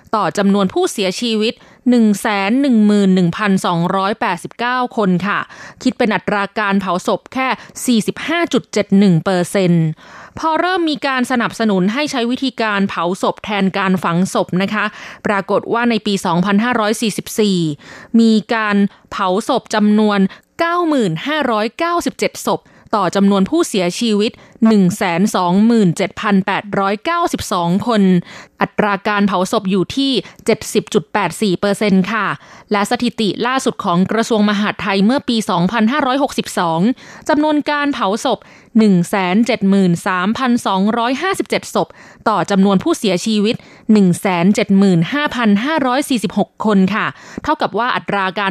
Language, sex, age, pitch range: Thai, female, 20-39, 195-240 Hz